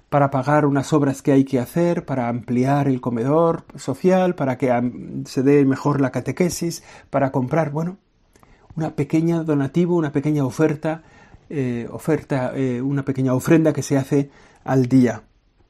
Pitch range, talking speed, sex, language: 130-165 Hz, 155 wpm, male, Spanish